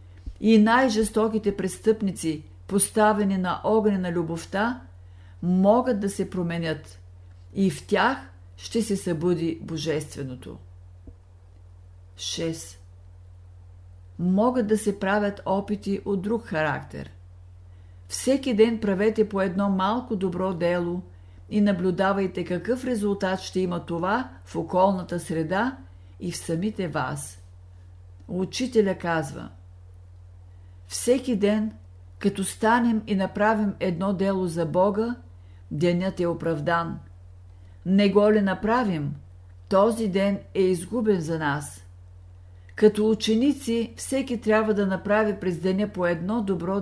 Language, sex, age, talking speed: Bulgarian, female, 50-69, 110 wpm